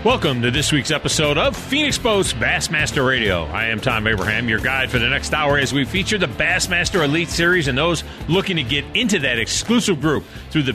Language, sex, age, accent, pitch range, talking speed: English, male, 40-59, American, 130-170 Hz, 210 wpm